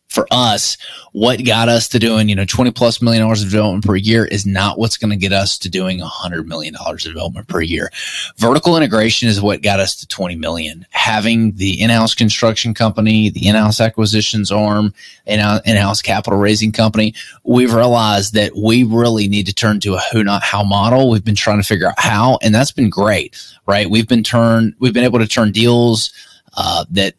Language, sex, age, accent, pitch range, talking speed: English, male, 20-39, American, 100-115 Hz, 205 wpm